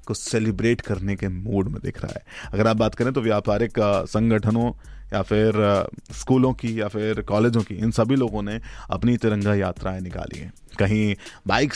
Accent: native